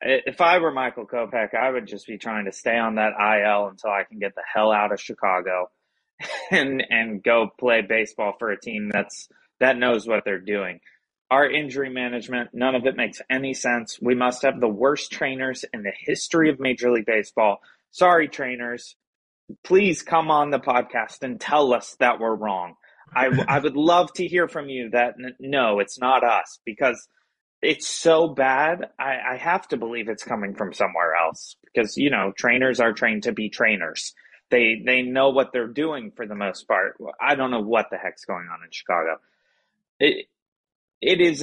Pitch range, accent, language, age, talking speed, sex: 110-145 Hz, American, English, 20-39, 190 wpm, male